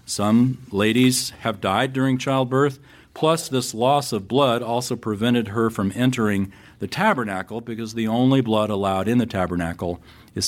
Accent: American